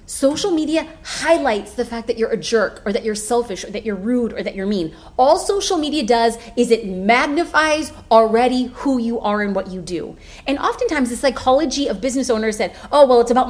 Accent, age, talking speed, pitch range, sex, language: American, 30-49, 215 wpm, 215-275 Hz, female, English